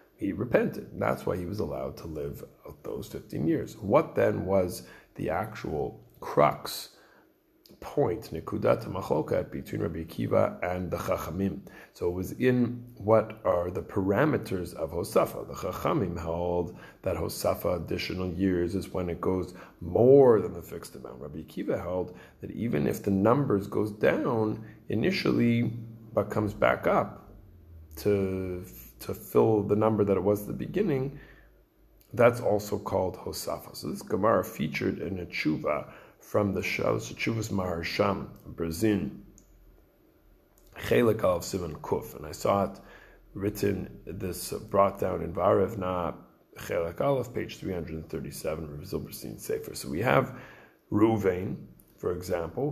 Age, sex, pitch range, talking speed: 30-49, male, 90-105 Hz, 135 wpm